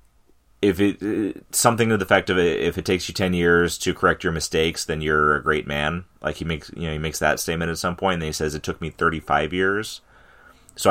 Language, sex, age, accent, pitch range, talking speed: English, male, 30-49, American, 75-90 Hz, 250 wpm